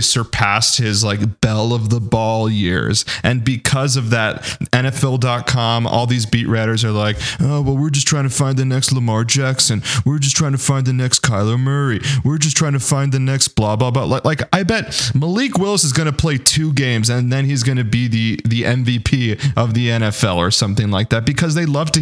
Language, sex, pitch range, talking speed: English, male, 110-135 Hz, 220 wpm